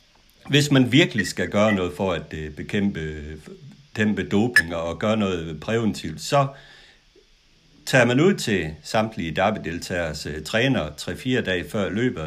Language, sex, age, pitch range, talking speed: Danish, male, 60-79, 85-105 Hz, 140 wpm